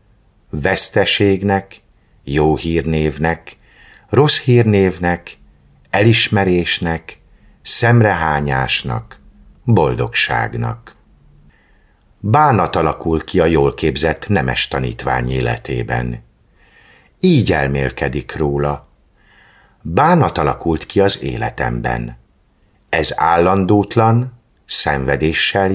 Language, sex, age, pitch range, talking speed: Hungarian, male, 50-69, 70-105 Hz, 65 wpm